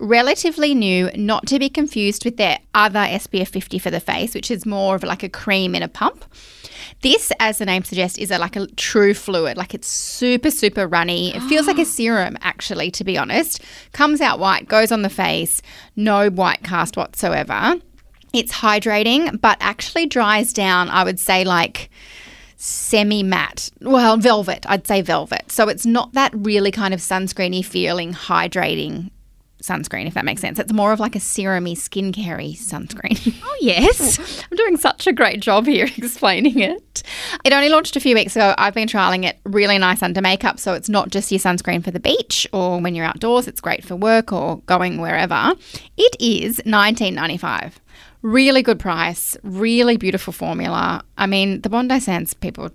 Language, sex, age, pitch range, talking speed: English, female, 20-39, 185-240 Hz, 180 wpm